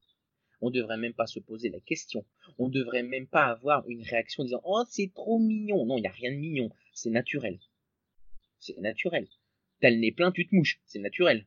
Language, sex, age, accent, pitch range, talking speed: French, male, 30-49, French, 115-160 Hz, 215 wpm